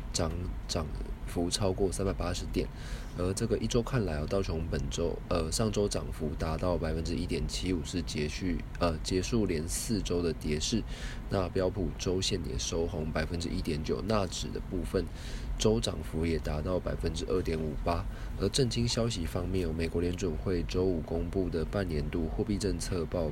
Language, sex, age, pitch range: Chinese, male, 20-39, 80-100 Hz